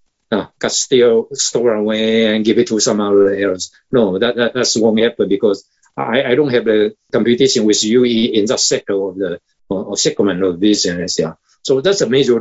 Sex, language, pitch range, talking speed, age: male, English, 105-140 Hz, 205 wpm, 50-69